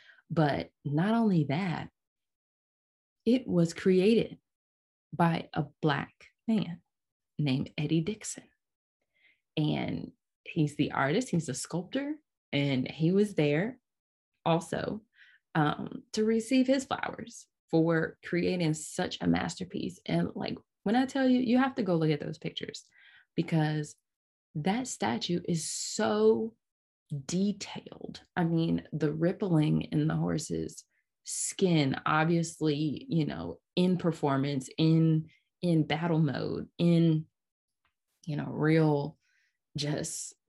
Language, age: English, 20-39